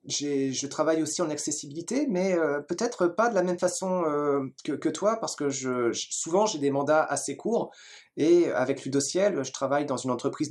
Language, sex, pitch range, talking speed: French, male, 135-180 Hz, 195 wpm